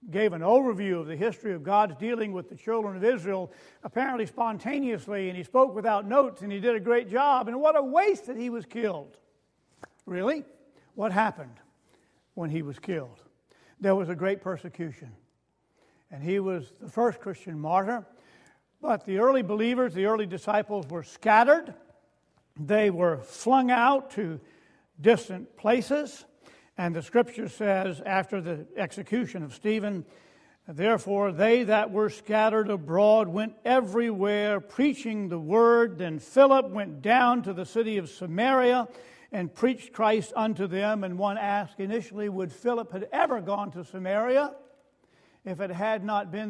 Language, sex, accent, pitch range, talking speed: English, male, American, 185-235 Hz, 155 wpm